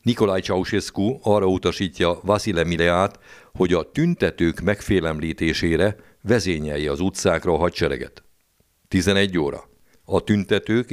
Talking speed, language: 105 wpm, Hungarian